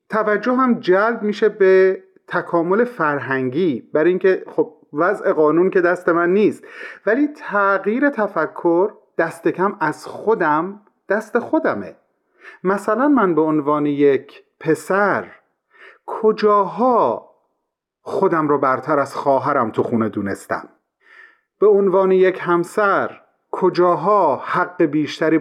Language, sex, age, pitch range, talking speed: Persian, male, 40-59, 150-210 Hz, 110 wpm